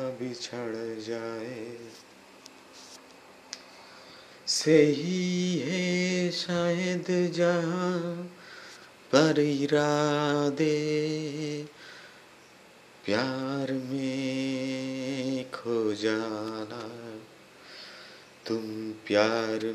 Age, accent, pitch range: 30-49, native, 115-165 Hz